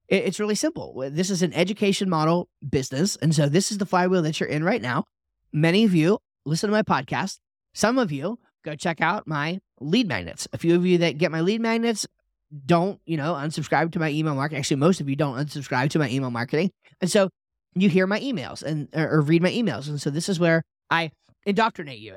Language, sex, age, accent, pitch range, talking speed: English, male, 30-49, American, 145-185 Hz, 220 wpm